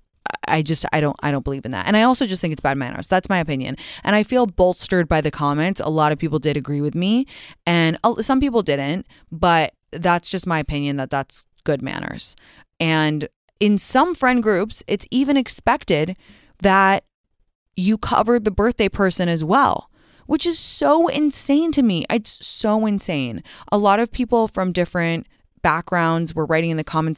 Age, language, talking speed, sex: 20-39, English, 190 wpm, female